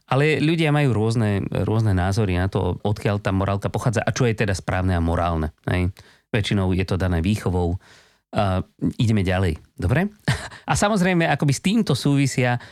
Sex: male